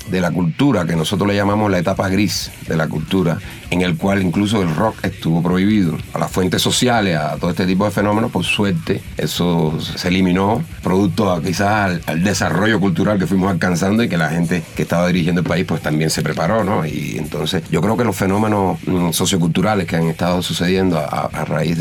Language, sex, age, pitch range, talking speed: Spanish, male, 30-49, 90-115 Hz, 205 wpm